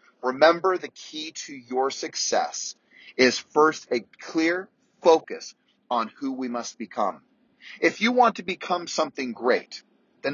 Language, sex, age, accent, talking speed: English, male, 30-49, American, 140 wpm